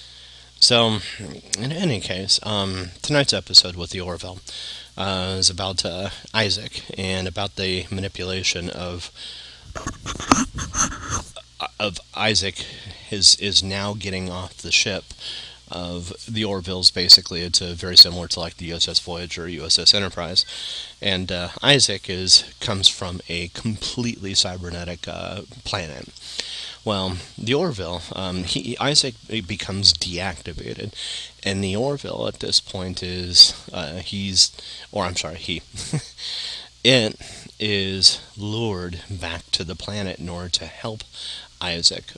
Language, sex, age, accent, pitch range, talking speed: English, male, 30-49, American, 85-100 Hz, 125 wpm